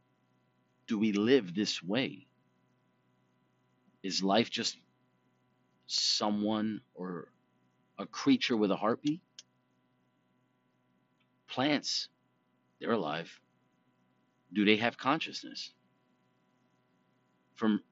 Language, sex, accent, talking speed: English, male, American, 75 wpm